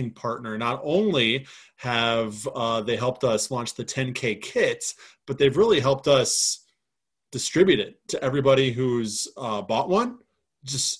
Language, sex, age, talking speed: English, male, 20-39, 140 wpm